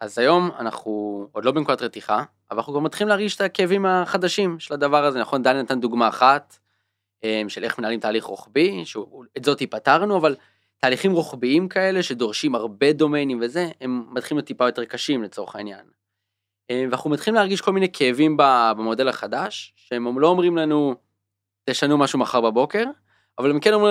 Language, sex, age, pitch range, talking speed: Hebrew, male, 20-39, 120-165 Hz, 165 wpm